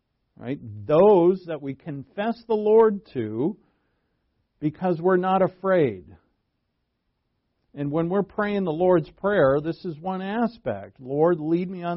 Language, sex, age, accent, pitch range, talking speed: English, male, 50-69, American, 135-190 Hz, 135 wpm